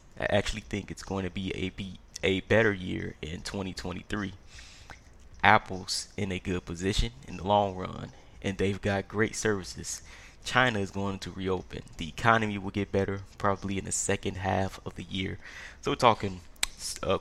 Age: 20-39